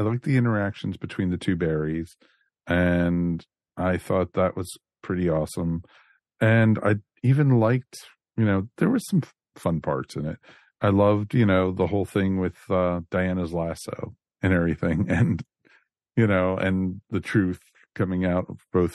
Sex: male